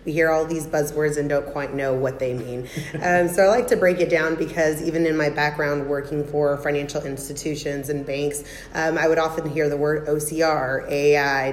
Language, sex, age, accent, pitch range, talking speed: English, female, 30-49, American, 145-165 Hz, 210 wpm